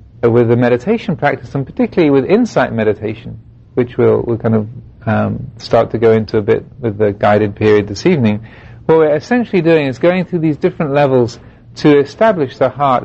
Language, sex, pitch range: English, male, 115-140 Hz